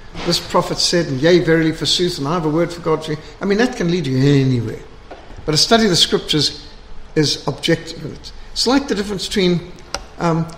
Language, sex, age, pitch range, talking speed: English, male, 60-79, 150-200 Hz, 210 wpm